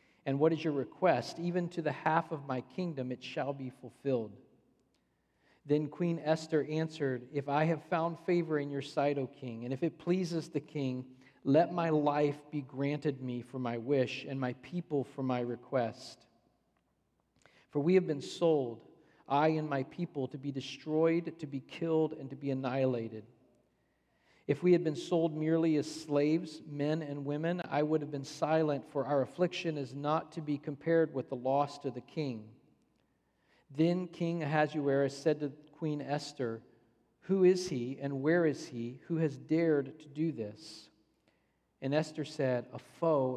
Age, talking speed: 40-59, 175 wpm